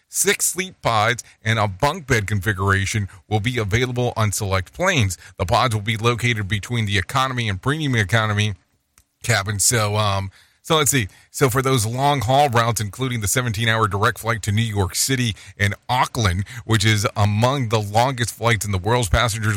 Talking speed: 180 wpm